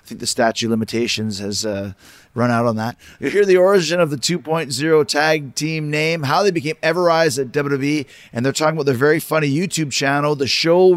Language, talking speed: English, 215 wpm